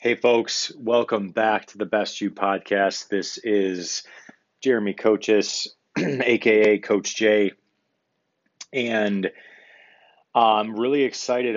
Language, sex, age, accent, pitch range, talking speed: English, male, 30-49, American, 95-105 Hz, 105 wpm